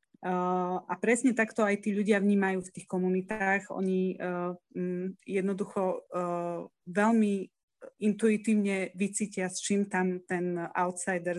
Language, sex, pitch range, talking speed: Slovak, female, 180-205 Hz, 105 wpm